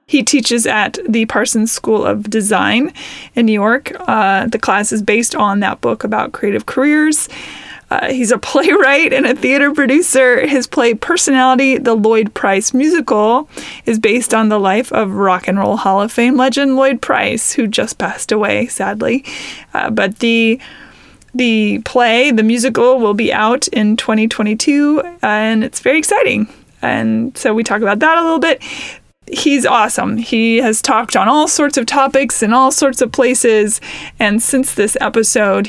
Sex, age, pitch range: female, 20-39, 215-265 Hz